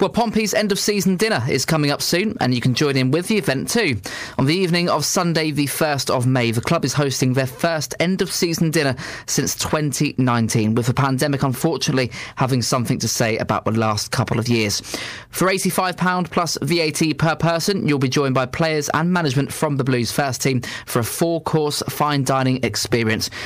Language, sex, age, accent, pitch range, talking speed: English, male, 20-39, British, 120-160 Hz, 190 wpm